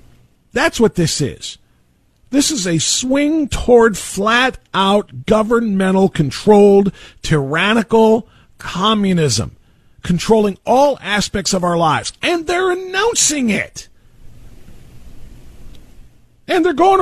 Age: 40-59